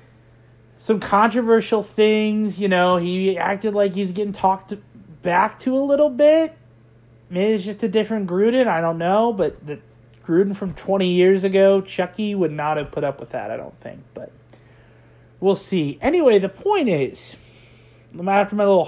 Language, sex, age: English, male, 30-49